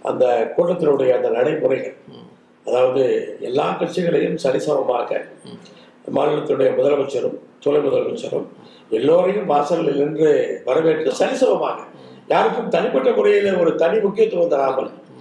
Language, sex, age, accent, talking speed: Tamil, male, 50-69, native, 95 wpm